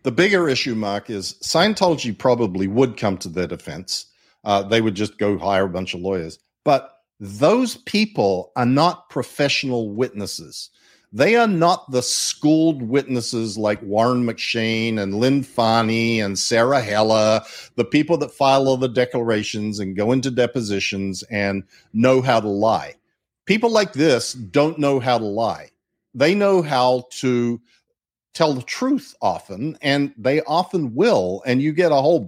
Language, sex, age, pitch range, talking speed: English, male, 50-69, 110-160 Hz, 160 wpm